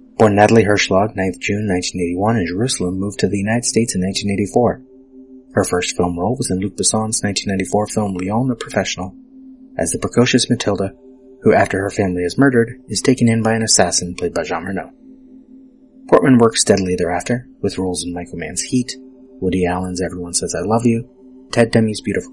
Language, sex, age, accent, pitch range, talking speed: English, male, 30-49, American, 95-130 Hz, 185 wpm